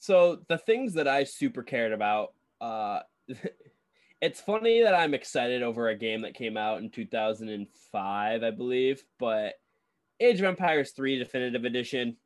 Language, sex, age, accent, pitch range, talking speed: English, male, 10-29, American, 120-150 Hz, 150 wpm